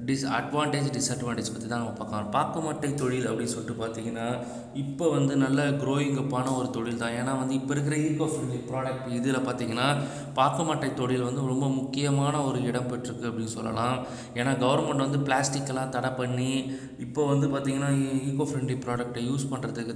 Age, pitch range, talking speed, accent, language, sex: 20-39, 125-145 Hz, 155 wpm, native, Tamil, male